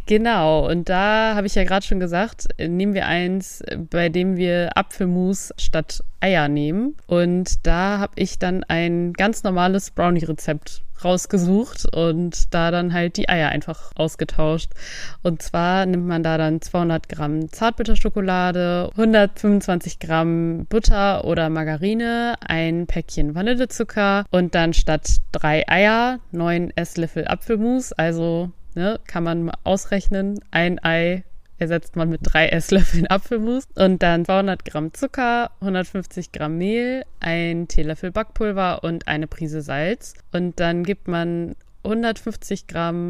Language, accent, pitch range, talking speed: German, German, 165-200 Hz, 135 wpm